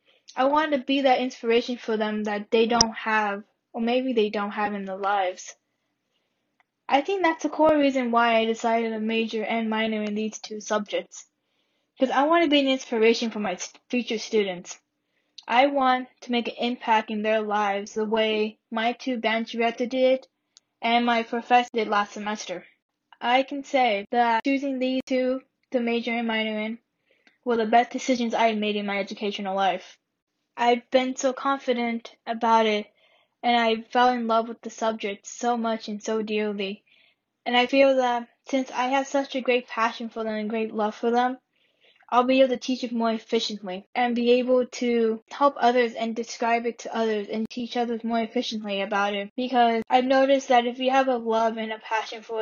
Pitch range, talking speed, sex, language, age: 220-255 Hz, 190 wpm, female, English, 10-29